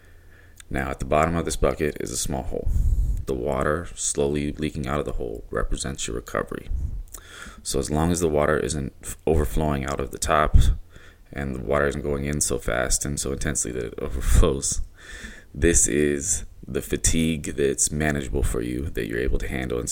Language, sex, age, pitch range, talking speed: English, male, 20-39, 70-85 Hz, 185 wpm